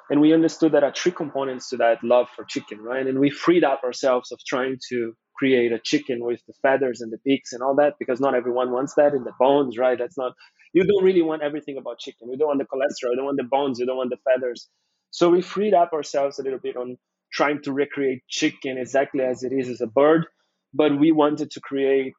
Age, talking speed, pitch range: 30-49, 250 wpm, 125-150 Hz